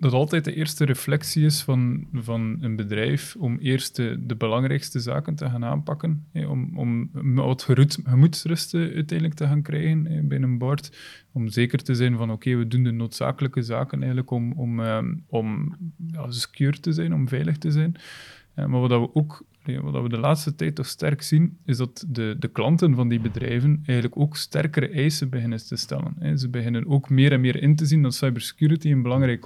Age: 20-39